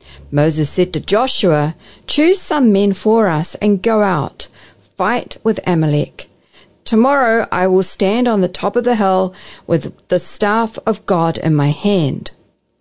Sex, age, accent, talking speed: female, 40-59, Australian, 155 wpm